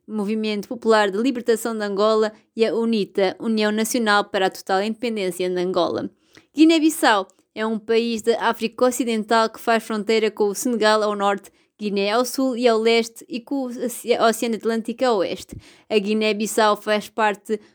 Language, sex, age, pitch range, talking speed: Portuguese, female, 20-39, 215-245 Hz, 165 wpm